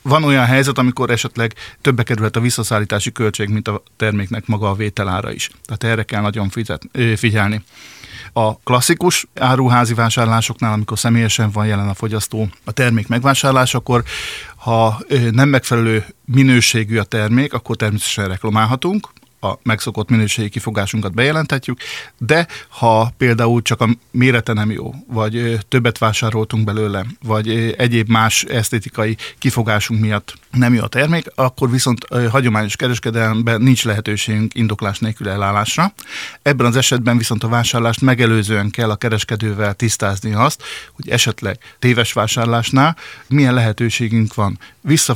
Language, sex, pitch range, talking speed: Hungarian, male, 110-125 Hz, 135 wpm